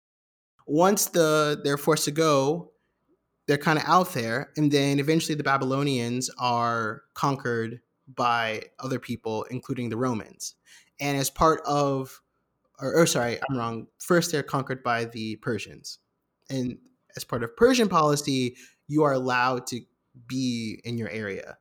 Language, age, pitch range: English, 20-39, 125-160 Hz